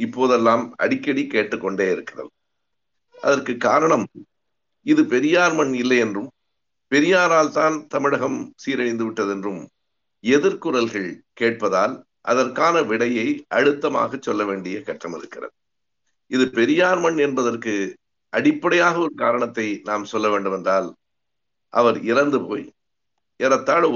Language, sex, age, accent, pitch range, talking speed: Tamil, male, 50-69, native, 115-170 Hz, 100 wpm